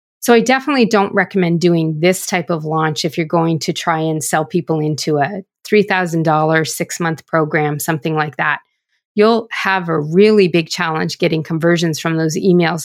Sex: female